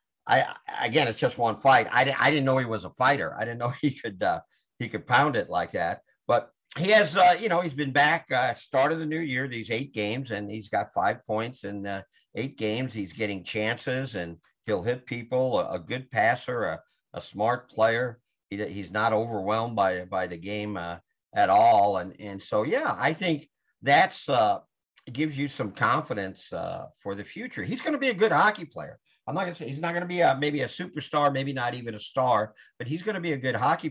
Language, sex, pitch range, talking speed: English, male, 110-150 Hz, 235 wpm